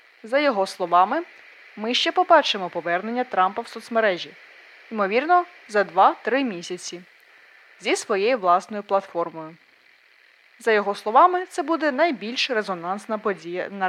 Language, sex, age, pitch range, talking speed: Ukrainian, female, 20-39, 185-285 Hz, 115 wpm